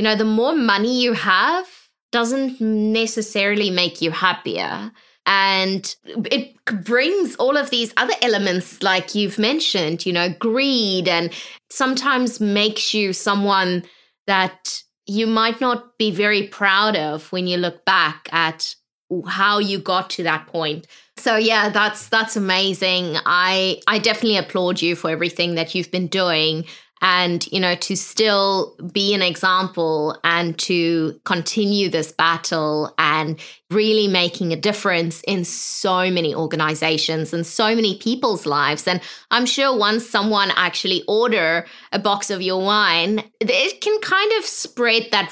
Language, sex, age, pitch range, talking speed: English, female, 20-39, 175-220 Hz, 145 wpm